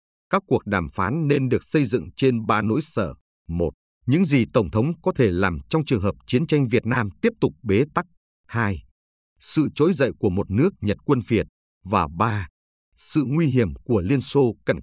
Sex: male